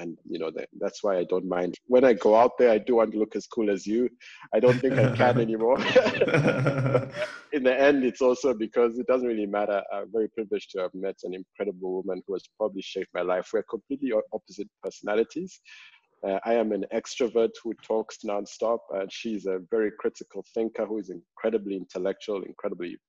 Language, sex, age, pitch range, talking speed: English, male, 50-69, 95-125 Hz, 195 wpm